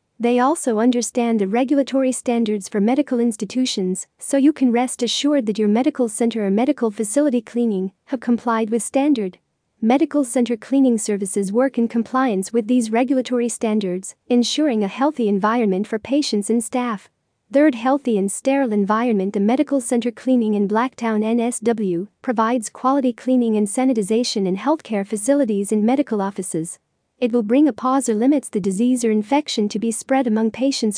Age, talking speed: 40-59, 165 wpm